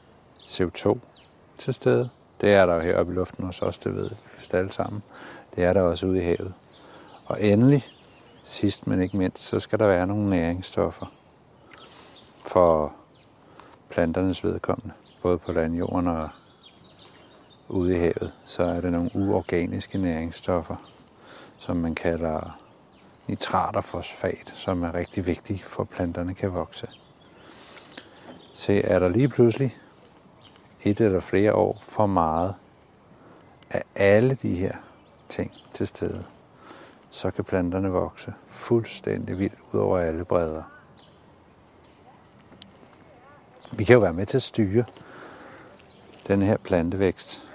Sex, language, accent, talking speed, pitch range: male, Danish, native, 130 wpm, 85-100 Hz